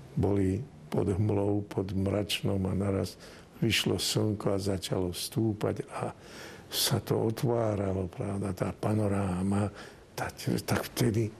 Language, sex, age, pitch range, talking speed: Slovak, male, 60-79, 95-120 Hz, 110 wpm